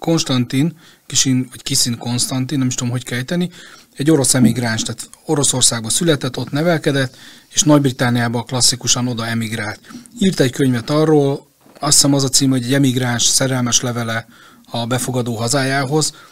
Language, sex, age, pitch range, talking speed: Hungarian, male, 30-49, 125-150 Hz, 150 wpm